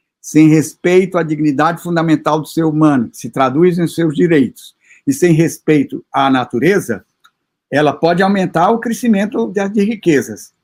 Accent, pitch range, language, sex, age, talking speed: Brazilian, 155-220 Hz, Portuguese, male, 50-69, 145 wpm